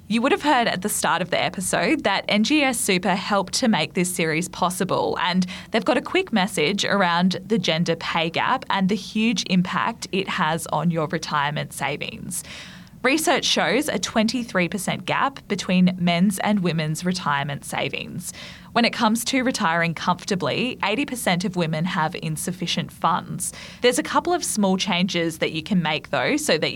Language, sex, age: English, female, 20-39